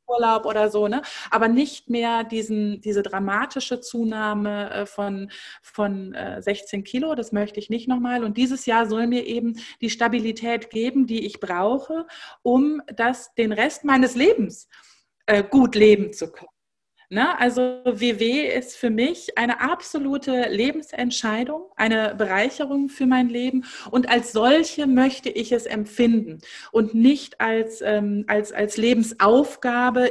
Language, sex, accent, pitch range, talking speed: German, female, German, 205-245 Hz, 140 wpm